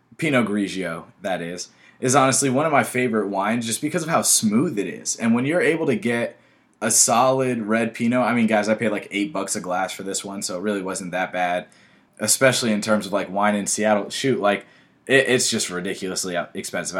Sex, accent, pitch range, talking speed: male, American, 100-135 Hz, 215 wpm